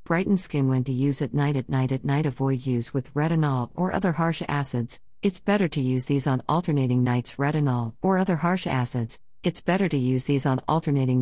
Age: 50-69